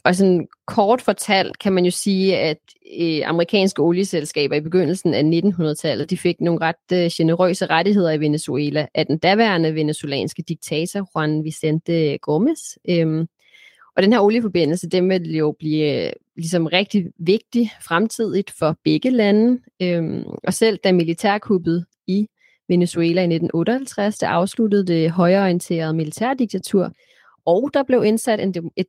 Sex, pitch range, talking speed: female, 165-210 Hz, 135 wpm